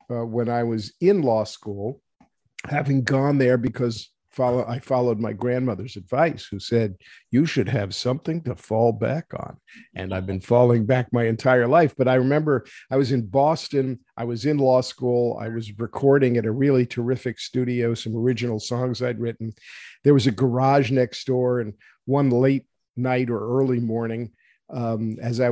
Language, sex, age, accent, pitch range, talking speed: English, male, 50-69, American, 115-145 Hz, 175 wpm